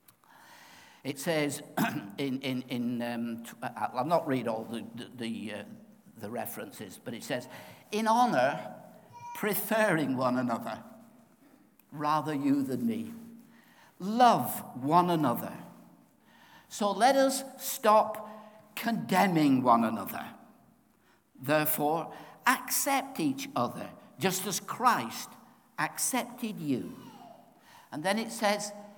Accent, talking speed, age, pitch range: British, 105 wpm, 60-79, 140-235 Hz